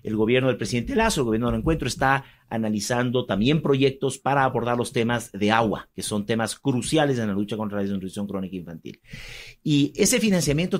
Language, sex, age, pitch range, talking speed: Spanish, male, 50-69, 110-145 Hz, 190 wpm